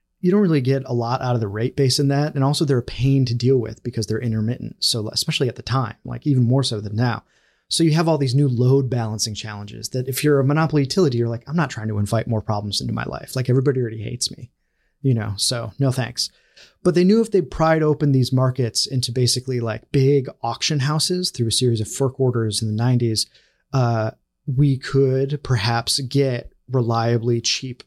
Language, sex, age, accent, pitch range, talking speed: English, male, 30-49, American, 115-140 Hz, 220 wpm